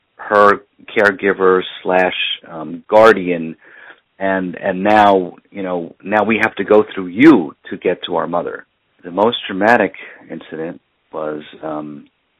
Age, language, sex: 50-69, English, male